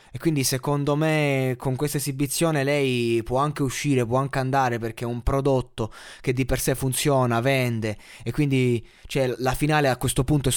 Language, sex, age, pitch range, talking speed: Italian, male, 20-39, 120-140 Hz, 185 wpm